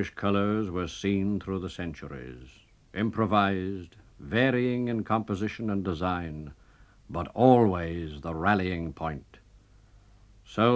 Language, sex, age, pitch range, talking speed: English, male, 60-79, 95-115 Hz, 100 wpm